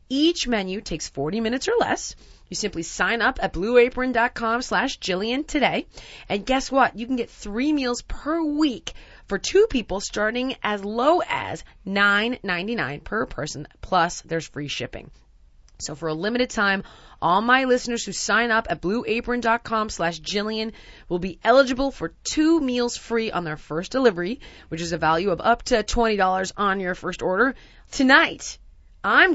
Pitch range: 165-245 Hz